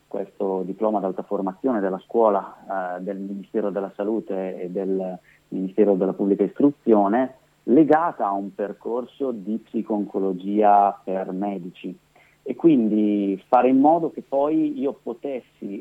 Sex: male